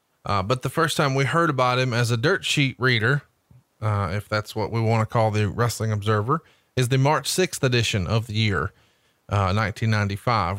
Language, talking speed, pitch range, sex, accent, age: English, 200 wpm, 110-135 Hz, male, American, 30-49